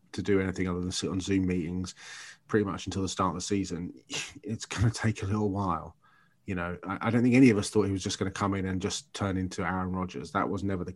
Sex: male